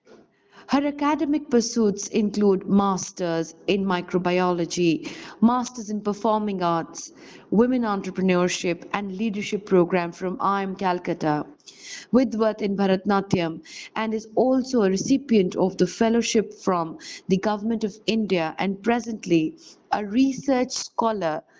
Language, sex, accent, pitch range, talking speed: English, female, Indian, 190-240 Hz, 115 wpm